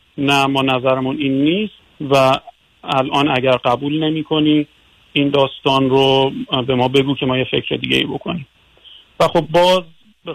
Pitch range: 135-155 Hz